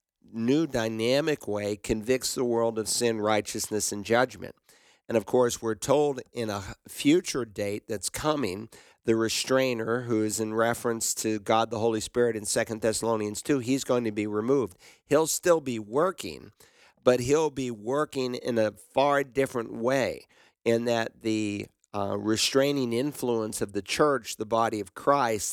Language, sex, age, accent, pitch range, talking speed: English, male, 50-69, American, 110-130 Hz, 160 wpm